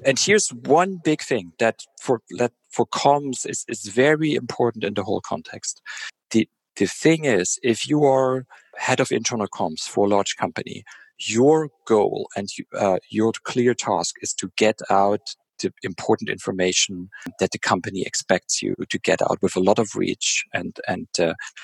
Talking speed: 175 wpm